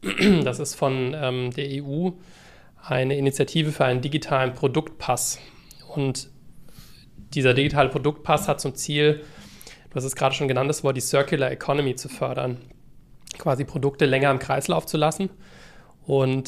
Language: English